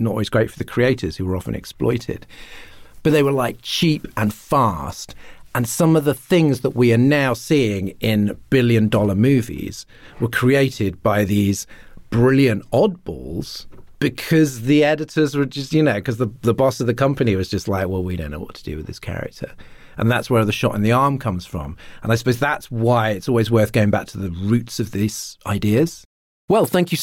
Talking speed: 205 wpm